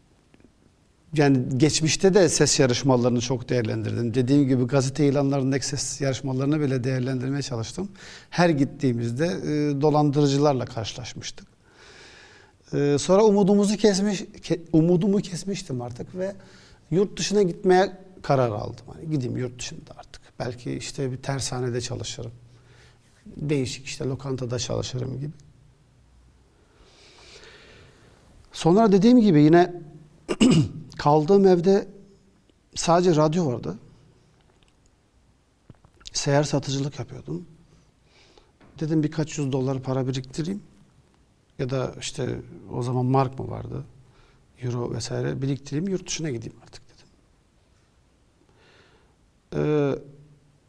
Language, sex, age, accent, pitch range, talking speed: Turkish, male, 50-69, native, 130-175 Hz, 100 wpm